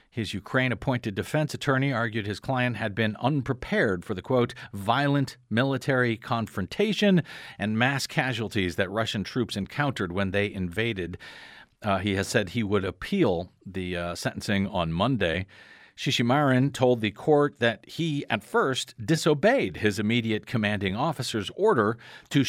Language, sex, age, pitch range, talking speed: English, male, 50-69, 105-135 Hz, 140 wpm